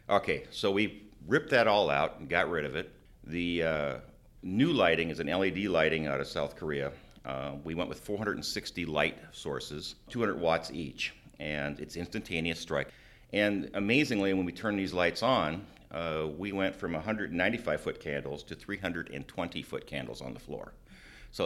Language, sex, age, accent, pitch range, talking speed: English, male, 50-69, American, 80-100 Hz, 170 wpm